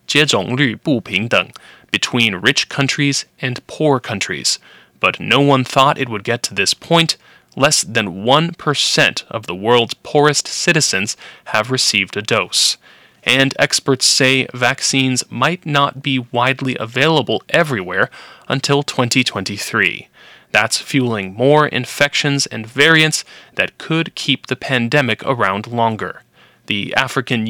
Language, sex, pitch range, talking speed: English, male, 120-145 Hz, 120 wpm